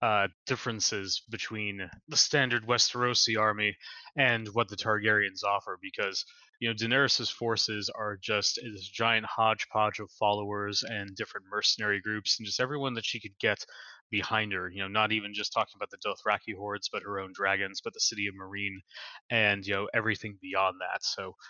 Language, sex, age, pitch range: English, male, 20-39, 105-125 Hz